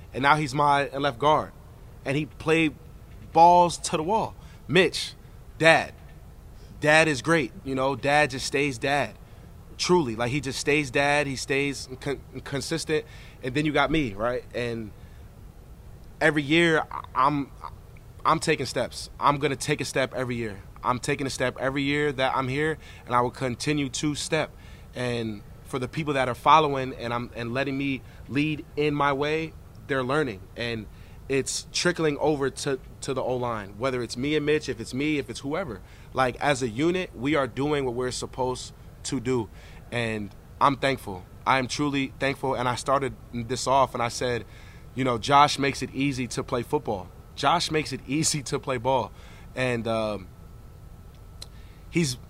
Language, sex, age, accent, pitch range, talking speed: English, male, 30-49, American, 120-150 Hz, 175 wpm